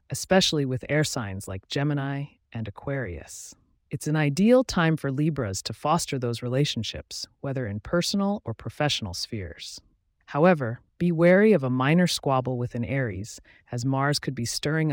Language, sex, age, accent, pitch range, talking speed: English, female, 30-49, American, 115-160 Hz, 155 wpm